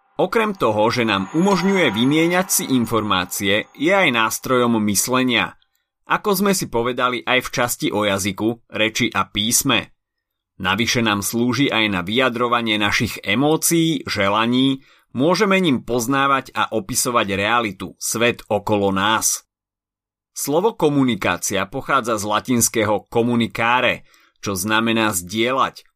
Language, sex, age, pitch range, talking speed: Slovak, male, 30-49, 110-140 Hz, 120 wpm